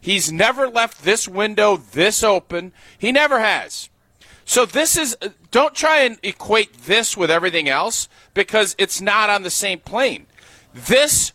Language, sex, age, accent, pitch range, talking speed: English, male, 40-59, American, 175-240 Hz, 155 wpm